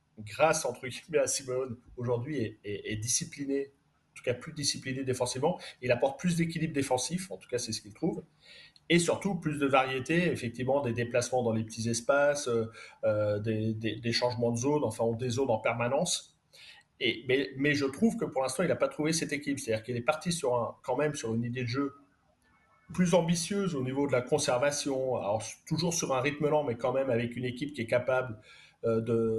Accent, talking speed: French, 205 wpm